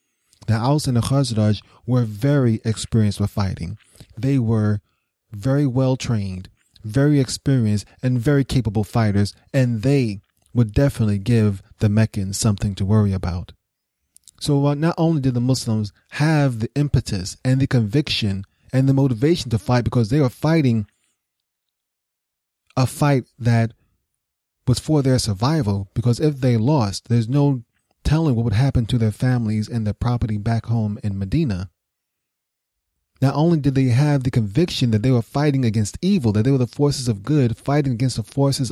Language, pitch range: English, 105-135 Hz